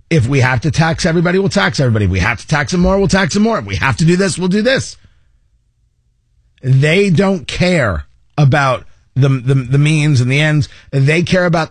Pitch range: 115-180 Hz